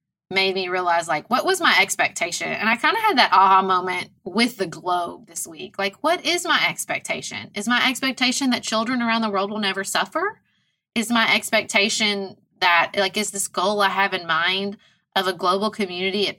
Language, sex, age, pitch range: English, female, 20-39, 180-220 Hz